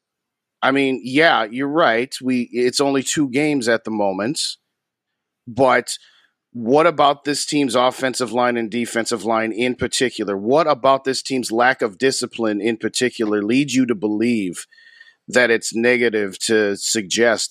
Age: 40-59